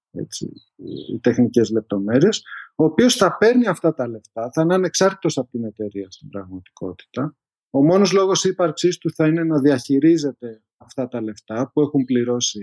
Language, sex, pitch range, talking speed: Greek, male, 135-220 Hz, 160 wpm